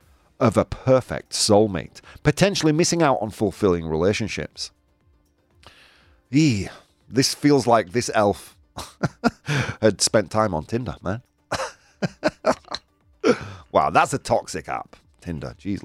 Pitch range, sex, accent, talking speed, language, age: 95-160 Hz, male, British, 110 wpm, English, 40-59